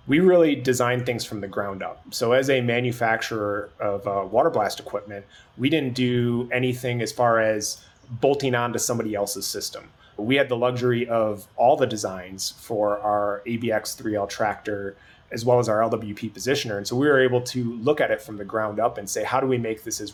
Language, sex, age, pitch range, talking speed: English, male, 30-49, 105-125 Hz, 210 wpm